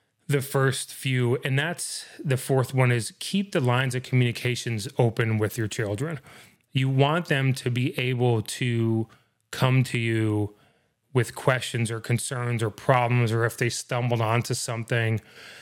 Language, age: English, 30-49